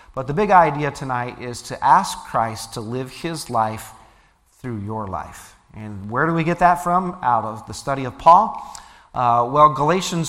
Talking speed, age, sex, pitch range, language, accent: 185 wpm, 40-59, male, 110-145 Hz, English, American